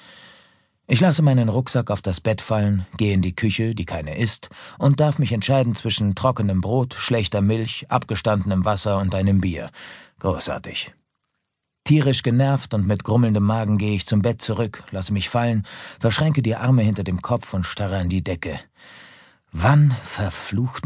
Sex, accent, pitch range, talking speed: male, German, 95-125 Hz, 165 wpm